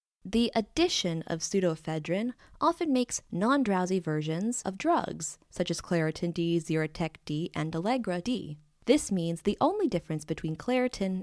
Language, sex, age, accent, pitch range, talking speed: English, female, 20-39, American, 170-250 Hz, 125 wpm